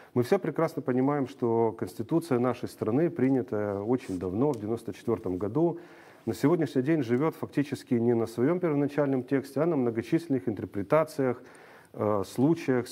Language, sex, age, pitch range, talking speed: Romanian, male, 40-59, 115-145 Hz, 135 wpm